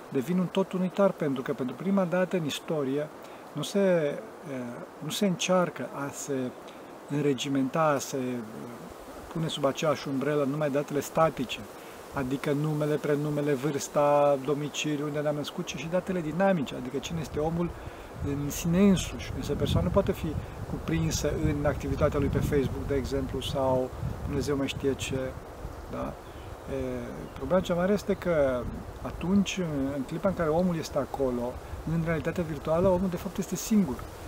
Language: Romanian